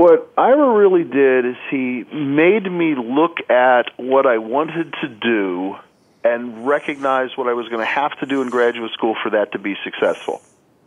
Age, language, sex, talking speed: 40-59, English, male, 180 wpm